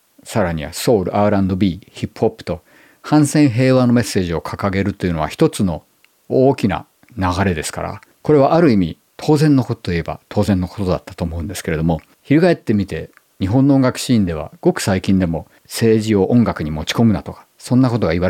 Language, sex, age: Japanese, male, 50-69